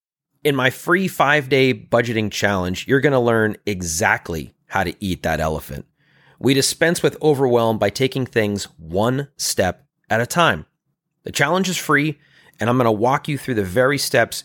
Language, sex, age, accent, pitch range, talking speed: English, male, 30-49, American, 100-150 Hz, 175 wpm